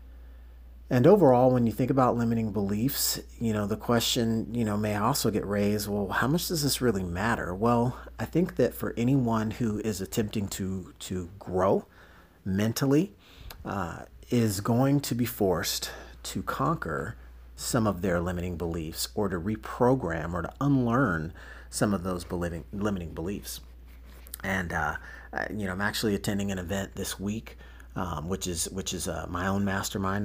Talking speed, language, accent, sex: 165 wpm, English, American, male